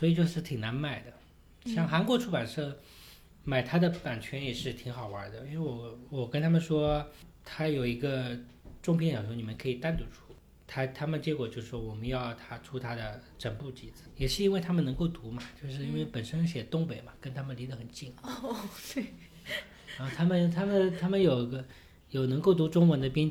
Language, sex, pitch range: Chinese, male, 120-165 Hz